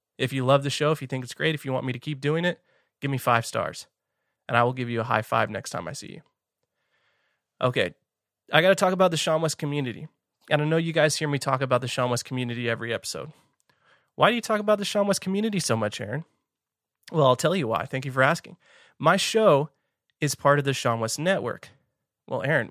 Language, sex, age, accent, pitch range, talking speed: English, male, 30-49, American, 130-155 Hz, 245 wpm